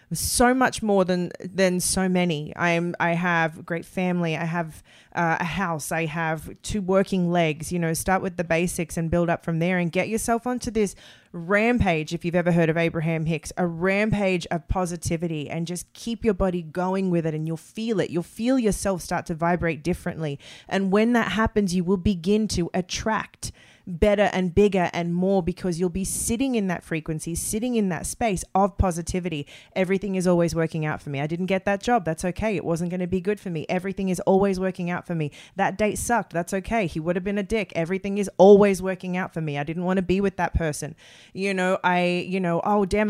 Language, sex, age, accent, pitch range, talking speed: English, female, 20-39, Australian, 170-200 Hz, 225 wpm